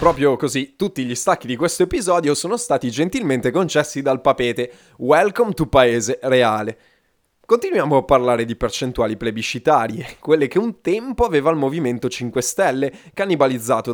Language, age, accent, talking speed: Italian, 20-39, native, 145 wpm